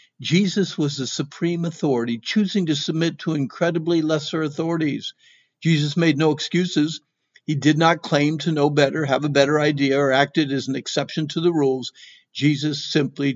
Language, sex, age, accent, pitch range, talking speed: English, male, 50-69, American, 140-170 Hz, 165 wpm